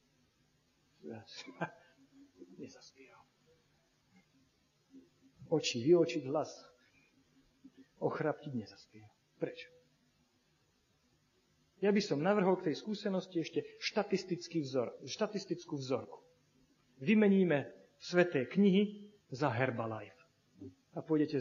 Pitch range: 135-215 Hz